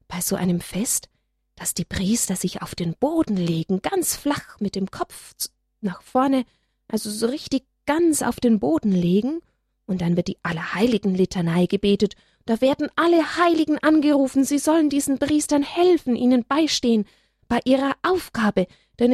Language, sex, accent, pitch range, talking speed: German, female, German, 190-275 Hz, 155 wpm